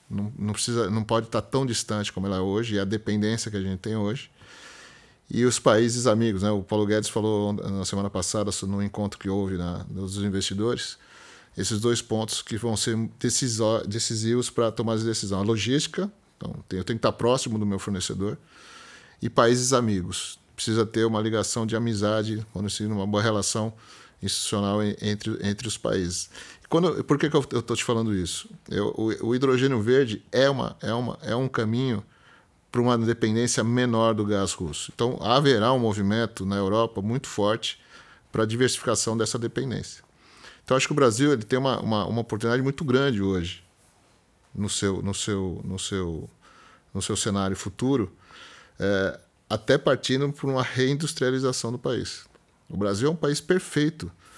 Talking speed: 170 wpm